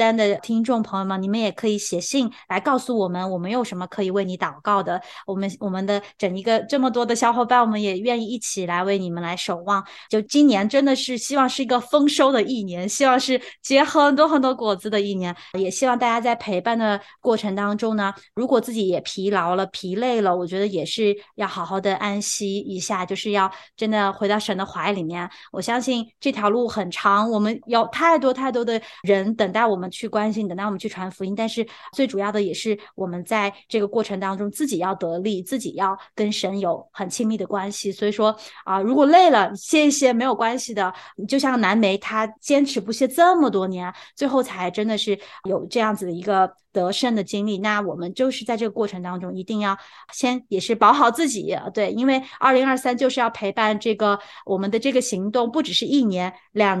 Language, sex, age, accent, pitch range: Chinese, female, 20-39, native, 195-245 Hz